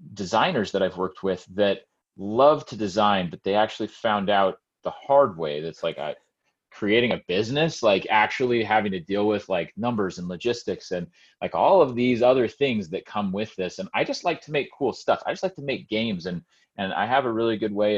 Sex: male